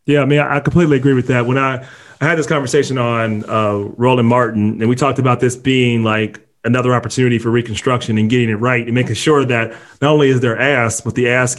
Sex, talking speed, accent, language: male, 235 wpm, American, English